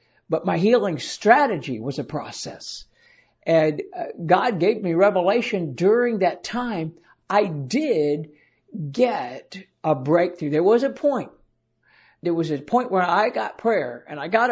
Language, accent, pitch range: English, American, 165-230 Hz